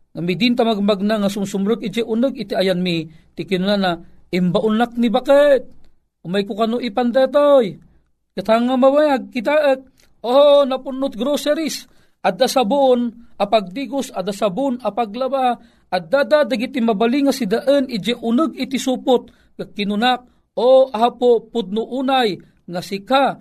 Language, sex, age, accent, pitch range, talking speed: Filipino, male, 40-59, native, 185-250 Hz, 140 wpm